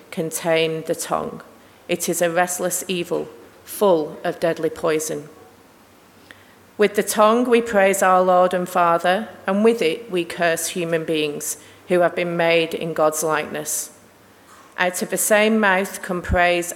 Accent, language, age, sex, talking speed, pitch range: British, English, 40-59, female, 150 wpm, 170-205 Hz